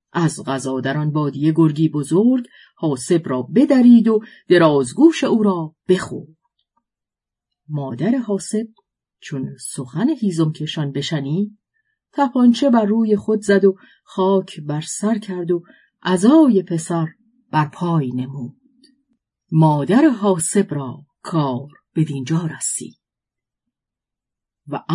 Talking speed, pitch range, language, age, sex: 110 wpm, 155-235 Hz, Persian, 40-59, female